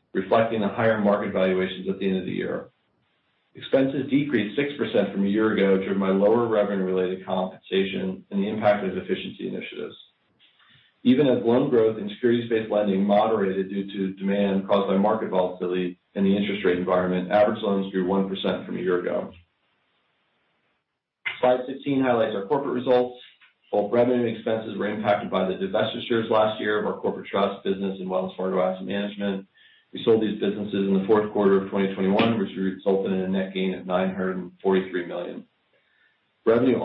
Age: 40-59